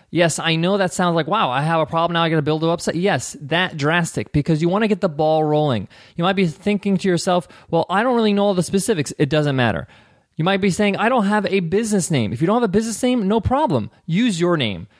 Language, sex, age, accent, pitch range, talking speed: English, male, 20-39, American, 140-185 Hz, 270 wpm